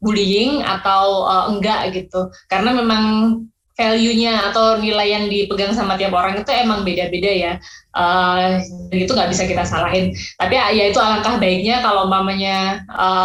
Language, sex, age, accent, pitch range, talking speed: Indonesian, female, 20-39, native, 185-215 Hz, 145 wpm